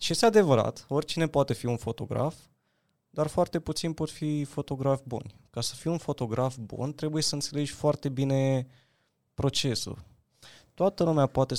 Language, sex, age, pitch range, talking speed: Romanian, male, 20-39, 120-150 Hz, 155 wpm